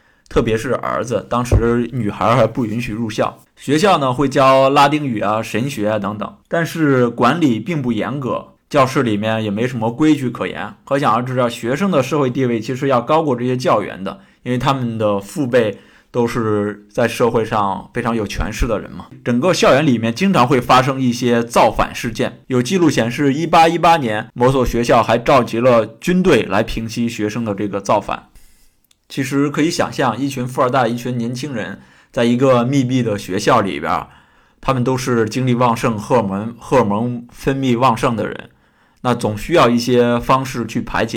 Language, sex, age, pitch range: Chinese, male, 20-39, 115-135 Hz